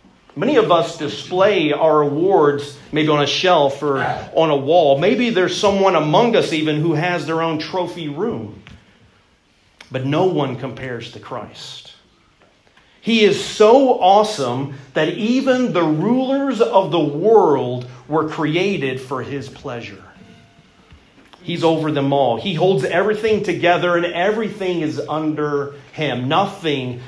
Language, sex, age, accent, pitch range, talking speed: English, male, 40-59, American, 145-205 Hz, 135 wpm